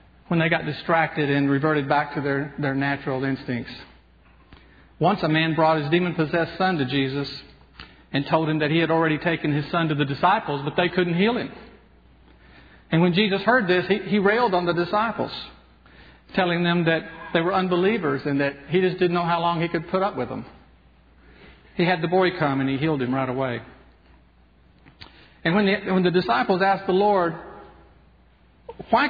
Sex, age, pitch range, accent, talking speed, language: male, 50-69, 120-180 Hz, American, 185 wpm, English